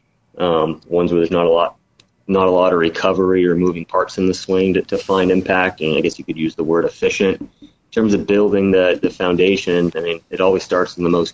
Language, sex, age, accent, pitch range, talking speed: English, male, 30-49, American, 85-100 Hz, 245 wpm